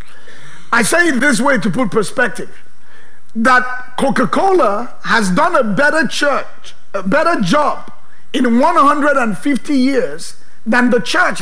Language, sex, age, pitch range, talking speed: English, male, 50-69, 225-280 Hz, 125 wpm